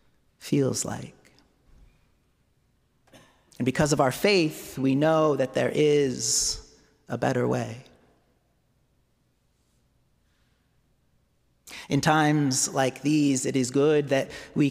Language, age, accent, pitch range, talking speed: English, 30-49, American, 130-150 Hz, 100 wpm